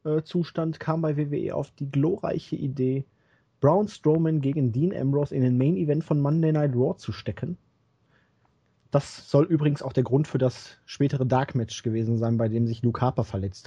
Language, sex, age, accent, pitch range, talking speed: German, male, 30-49, German, 115-140 Hz, 185 wpm